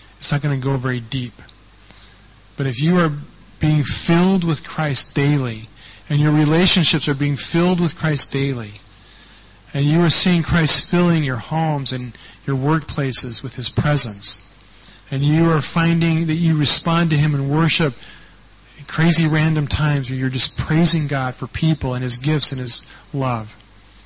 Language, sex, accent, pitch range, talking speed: English, male, American, 110-150 Hz, 165 wpm